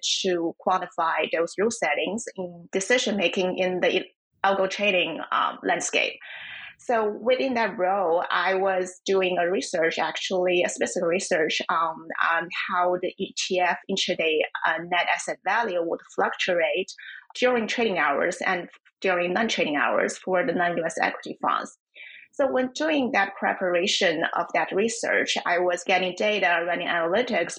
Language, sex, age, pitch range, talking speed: English, female, 30-49, 180-230 Hz, 140 wpm